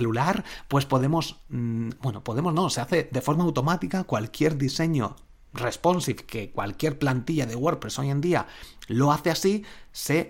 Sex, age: male, 30-49